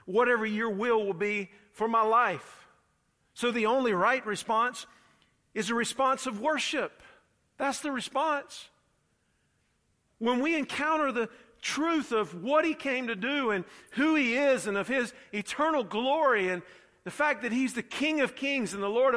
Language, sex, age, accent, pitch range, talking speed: English, male, 50-69, American, 145-240 Hz, 165 wpm